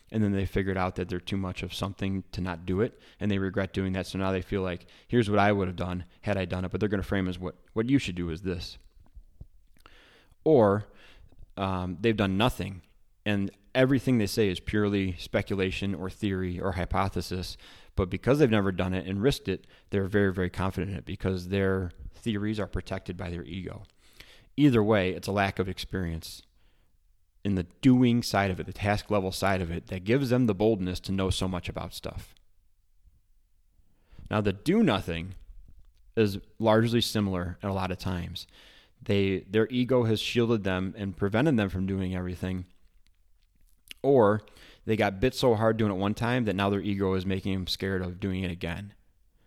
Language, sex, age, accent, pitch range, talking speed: English, male, 20-39, American, 90-105 Hz, 200 wpm